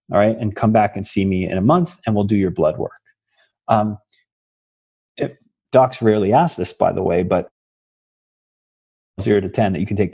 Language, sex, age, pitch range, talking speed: English, male, 30-49, 110-160 Hz, 200 wpm